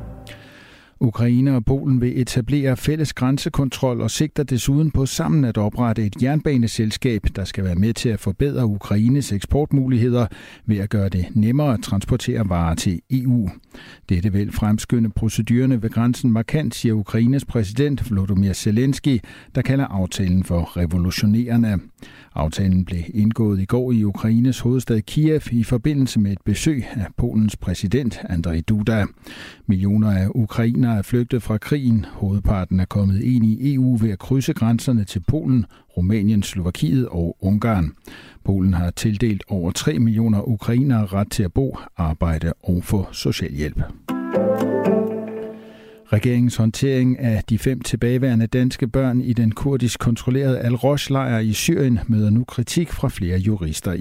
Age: 60-79